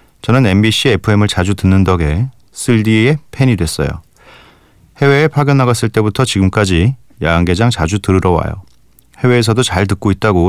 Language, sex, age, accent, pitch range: Korean, male, 40-59, native, 85-115 Hz